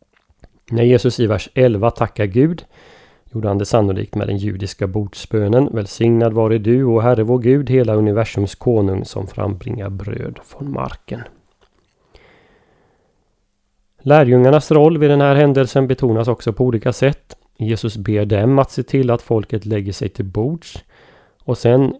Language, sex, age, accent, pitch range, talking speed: Swedish, male, 30-49, native, 105-125 Hz, 155 wpm